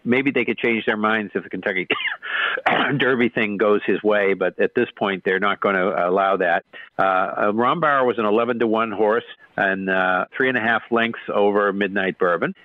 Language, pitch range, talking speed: English, 100-120 Hz, 200 wpm